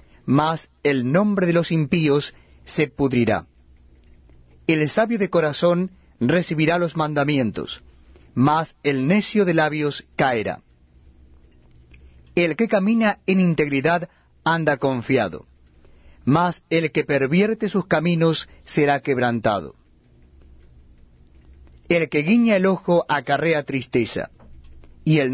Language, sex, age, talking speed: Spanish, male, 40-59, 105 wpm